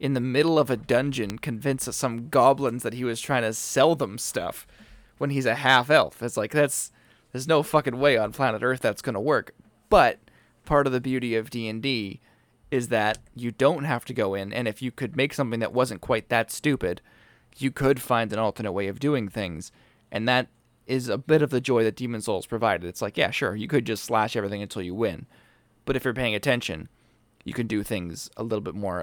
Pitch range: 110-130 Hz